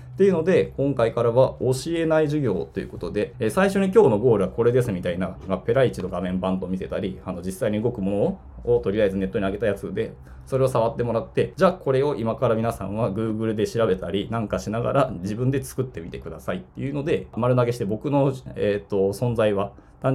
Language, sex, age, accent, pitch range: Japanese, male, 20-39, native, 95-145 Hz